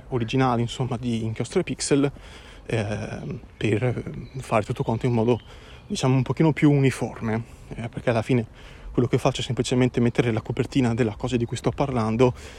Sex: male